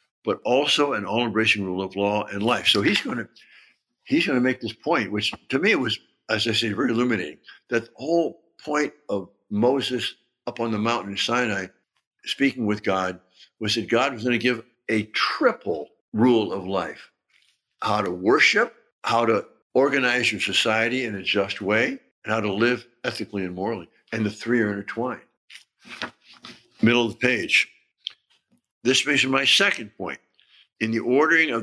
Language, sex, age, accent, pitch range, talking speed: English, male, 60-79, American, 110-135 Hz, 175 wpm